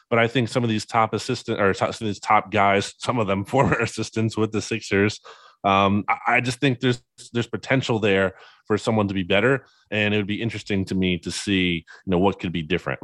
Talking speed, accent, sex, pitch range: 230 wpm, American, male, 100-125 Hz